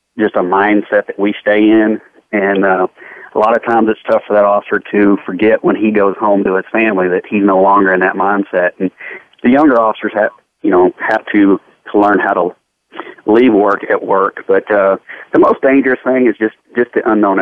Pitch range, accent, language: 95-105 Hz, American, English